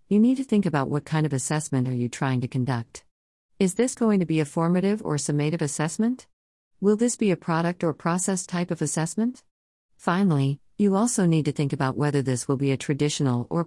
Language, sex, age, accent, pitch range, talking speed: English, female, 50-69, American, 135-170 Hz, 210 wpm